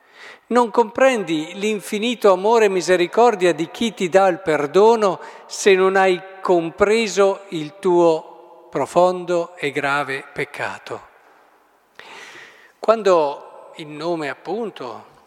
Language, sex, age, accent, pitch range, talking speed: Italian, male, 50-69, native, 150-205 Hz, 100 wpm